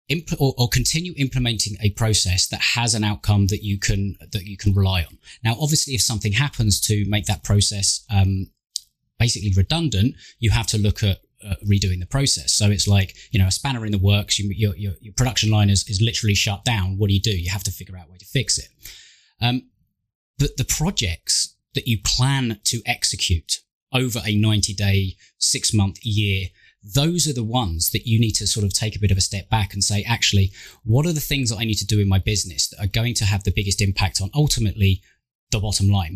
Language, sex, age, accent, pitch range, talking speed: English, male, 20-39, British, 100-120 Hz, 225 wpm